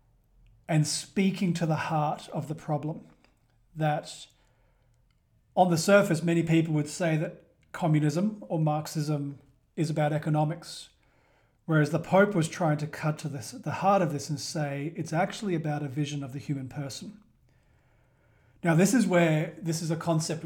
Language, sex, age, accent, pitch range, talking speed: English, male, 40-59, Australian, 145-165 Hz, 160 wpm